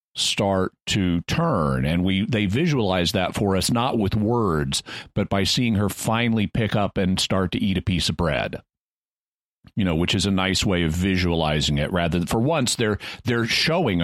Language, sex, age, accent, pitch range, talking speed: English, male, 40-59, American, 95-110 Hz, 190 wpm